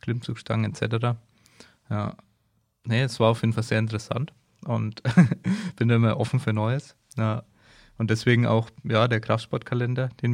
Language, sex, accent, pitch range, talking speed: German, male, German, 110-120 Hz, 145 wpm